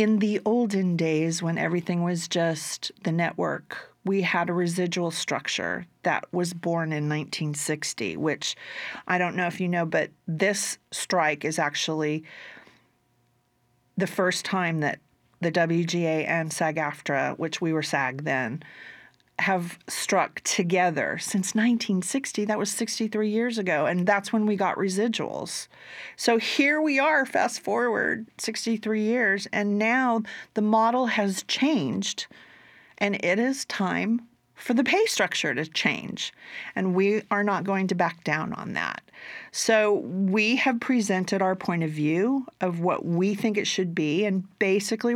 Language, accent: English, American